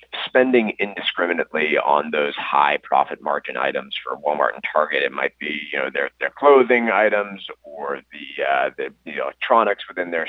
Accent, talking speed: American, 170 wpm